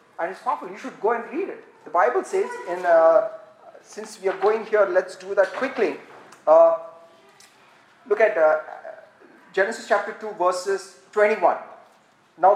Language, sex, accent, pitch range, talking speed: English, male, Indian, 200-290 Hz, 160 wpm